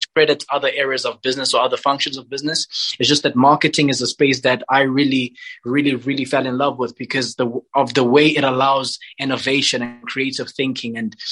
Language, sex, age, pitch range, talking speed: English, male, 20-39, 125-145 Hz, 195 wpm